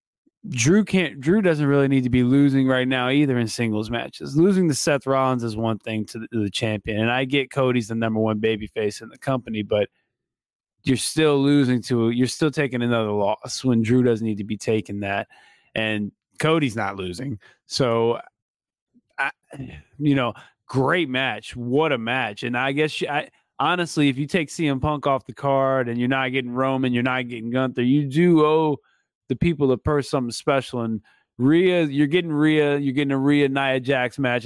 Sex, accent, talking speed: male, American, 200 wpm